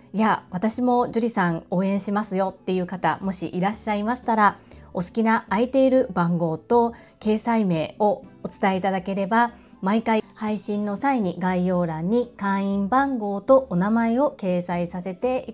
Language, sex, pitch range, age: Japanese, female, 180-235 Hz, 30-49